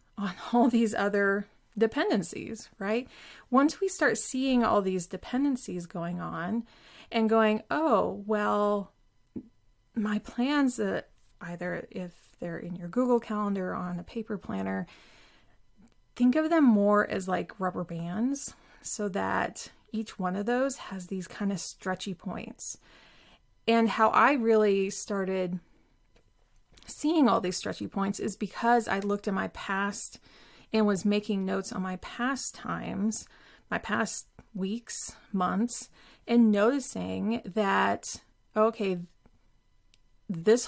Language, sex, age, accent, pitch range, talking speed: English, female, 20-39, American, 185-230 Hz, 130 wpm